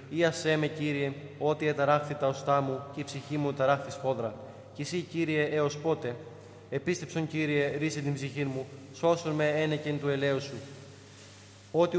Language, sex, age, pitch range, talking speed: Greek, male, 20-39, 140-155 Hz, 165 wpm